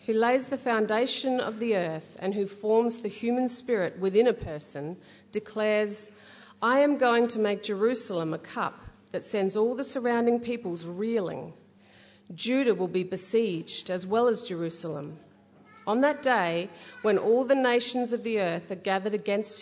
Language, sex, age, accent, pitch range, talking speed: English, female, 40-59, Australian, 180-235 Hz, 160 wpm